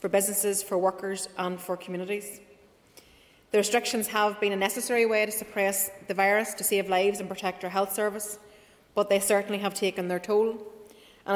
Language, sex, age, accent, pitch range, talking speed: English, female, 30-49, Irish, 190-210 Hz, 180 wpm